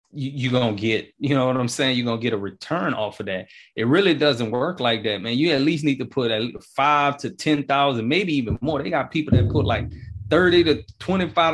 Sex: male